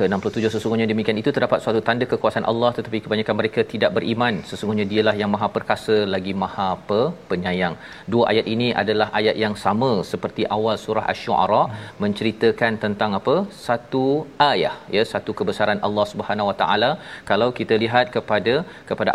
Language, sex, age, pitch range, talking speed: Malayalam, male, 40-59, 110-125 Hz, 155 wpm